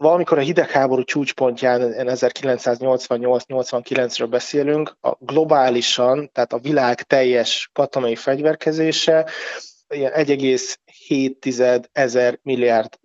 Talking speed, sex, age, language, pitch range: 80 wpm, male, 30-49, Hungarian, 125-140 Hz